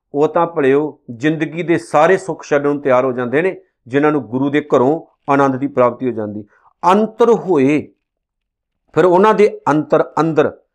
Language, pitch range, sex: Punjabi, 140-195 Hz, male